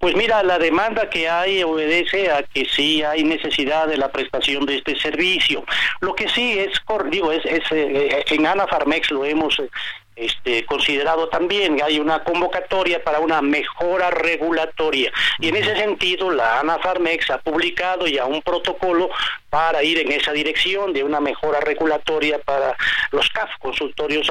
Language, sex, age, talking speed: Spanish, male, 40-59, 155 wpm